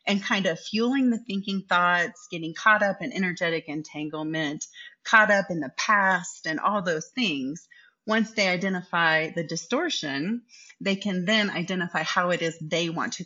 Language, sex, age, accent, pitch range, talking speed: English, female, 30-49, American, 170-235 Hz, 170 wpm